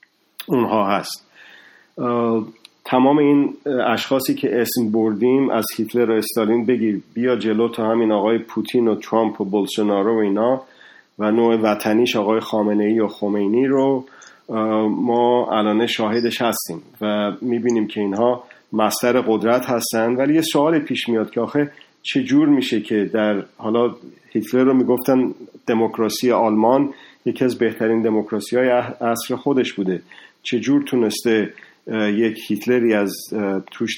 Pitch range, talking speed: 105-125 Hz, 130 wpm